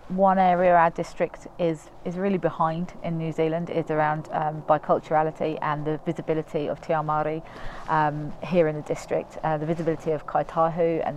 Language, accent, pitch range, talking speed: English, British, 150-175 Hz, 165 wpm